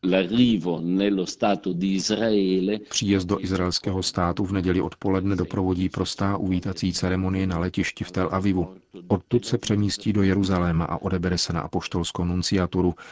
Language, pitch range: Czech, 90-100 Hz